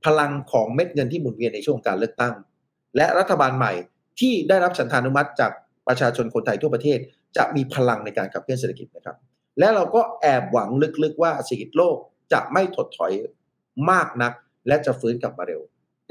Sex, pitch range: male, 130-185 Hz